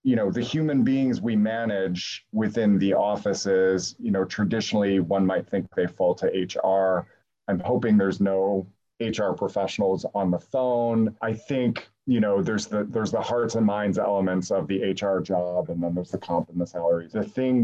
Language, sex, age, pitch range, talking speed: English, male, 30-49, 95-110 Hz, 185 wpm